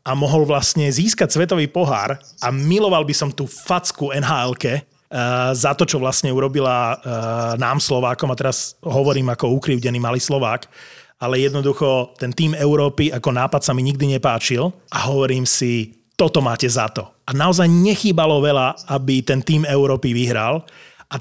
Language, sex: Slovak, male